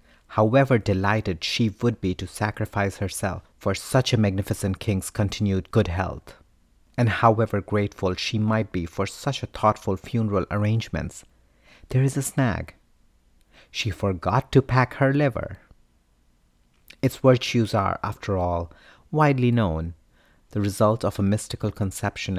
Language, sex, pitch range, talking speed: English, male, 85-115 Hz, 135 wpm